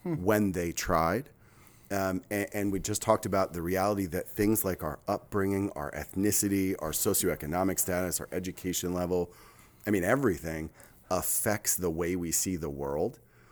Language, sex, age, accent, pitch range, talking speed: English, male, 30-49, American, 90-110 Hz, 155 wpm